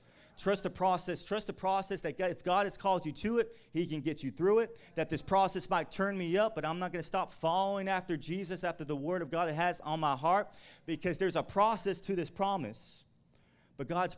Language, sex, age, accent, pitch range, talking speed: English, male, 30-49, American, 135-185 Hz, 235 wpm